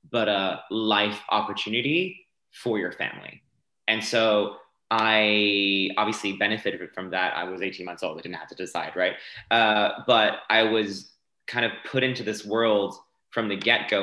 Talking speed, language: 165 wpm, English